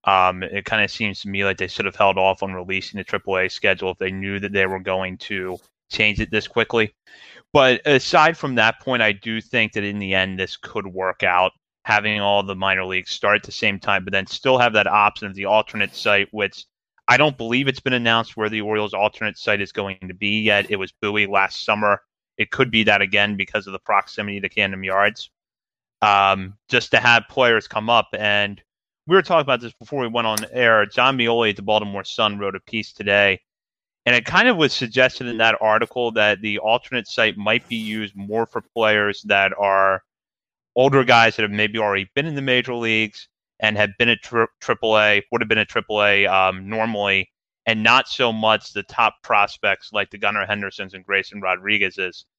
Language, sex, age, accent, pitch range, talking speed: English, male, 30-49, American, 100-115 Hz, 215 wpm